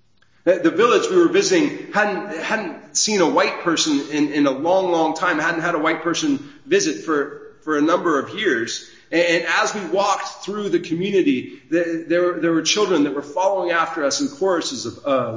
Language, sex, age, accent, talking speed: English, male, 40-59, American, 190 wpm